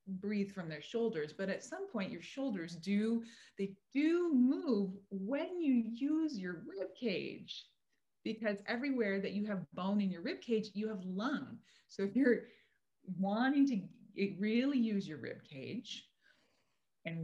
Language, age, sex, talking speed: German, 30-49, female, 155 wpm